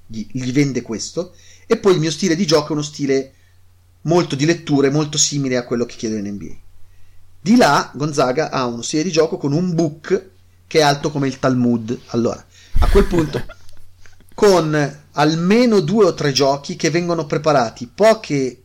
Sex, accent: male, native